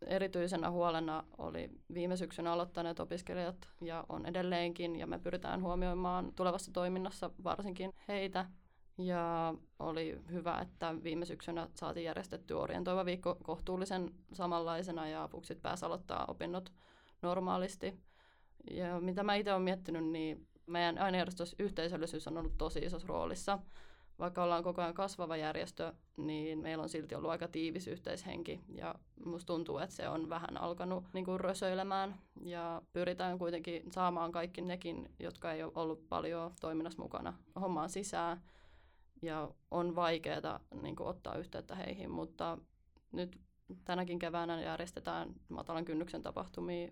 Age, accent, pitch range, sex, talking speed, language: 20-39, native, 160-180 Hz, female, 130 wpm, Finnish